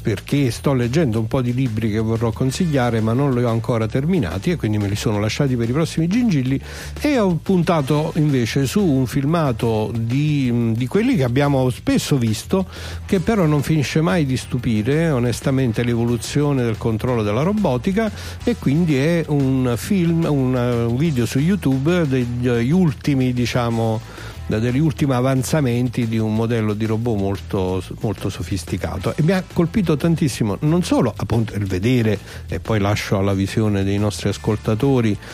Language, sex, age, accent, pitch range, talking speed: Italian, male, 60-79, native, 110-150 Hz, 160 wpm